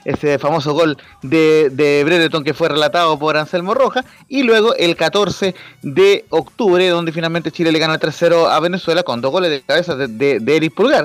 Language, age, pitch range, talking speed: Spanish, 30-49, 145-180 Hz, 200 wpm